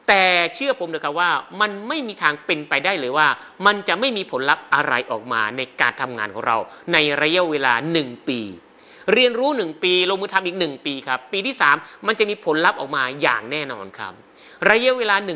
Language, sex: Thai, male